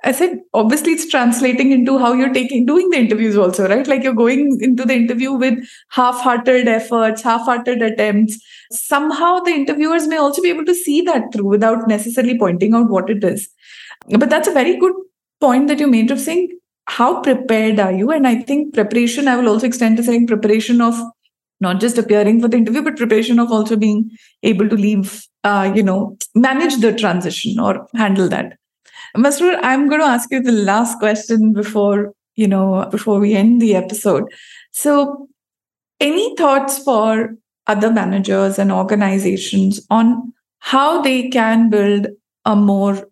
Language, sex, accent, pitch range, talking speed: English, female, Indian, 205-260 Hz, 175 wpm